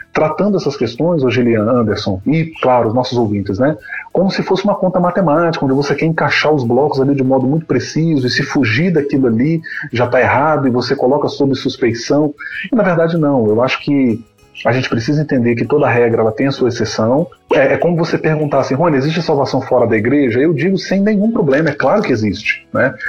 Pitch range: 125-155 Hz